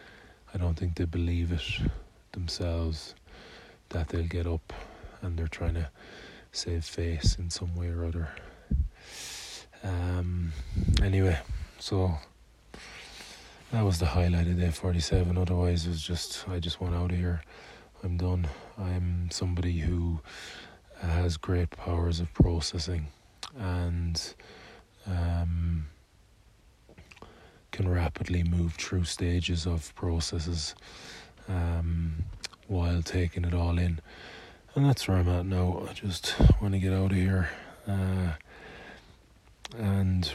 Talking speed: 125 wpm